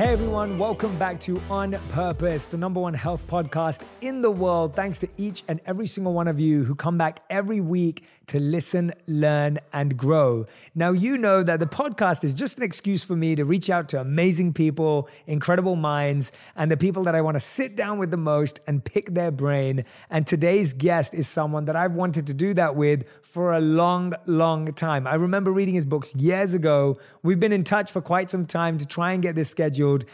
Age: 30-49